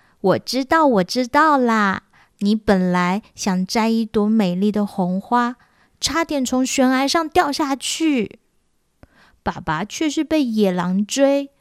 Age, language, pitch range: 20-39, Chinese, 195-265 Hz